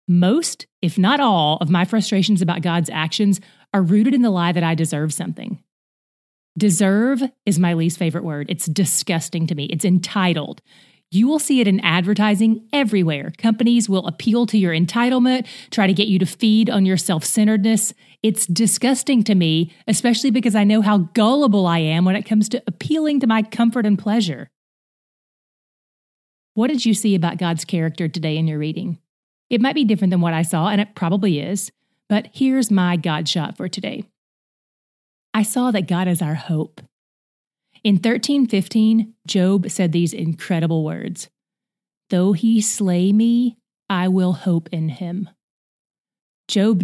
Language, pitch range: English, 170-220 Hz